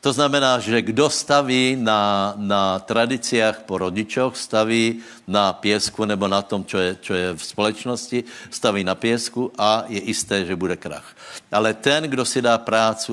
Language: Slovak